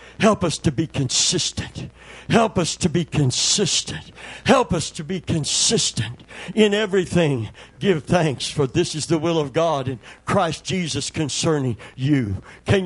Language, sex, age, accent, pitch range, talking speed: English, male, 60-79, American, 135-195 Hz, 150 wpm